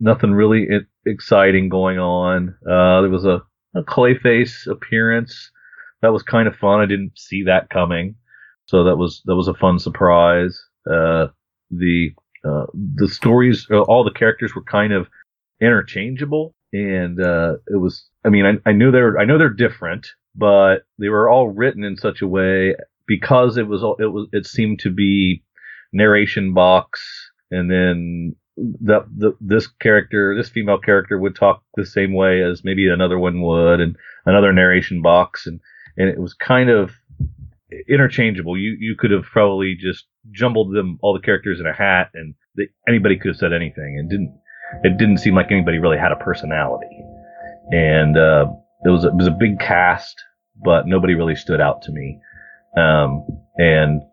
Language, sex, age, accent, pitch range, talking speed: English, male, 40-59, American, 90-105 Hz, 175 wpm